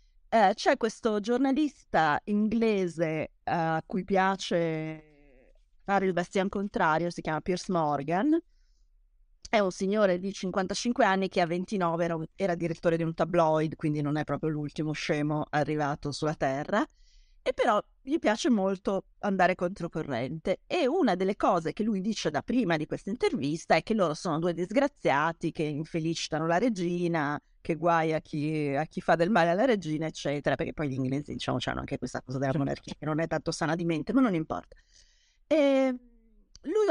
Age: 30-49